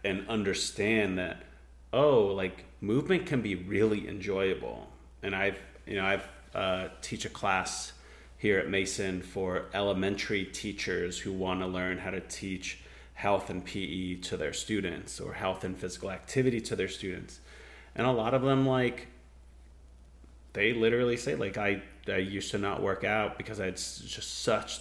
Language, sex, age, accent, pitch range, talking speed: English, male, 30-49, American, 90-105 Hz, 165 wpm